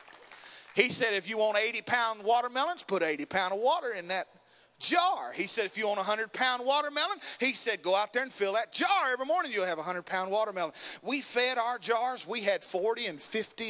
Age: 40-59